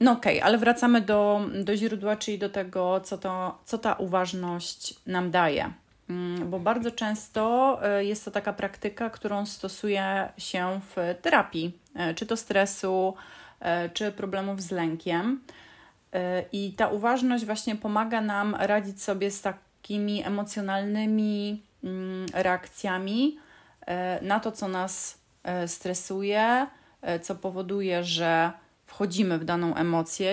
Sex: female